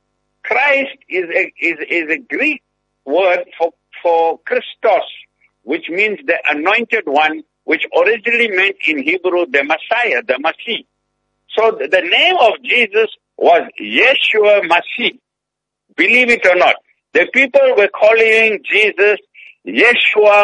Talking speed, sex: 130 wpm, male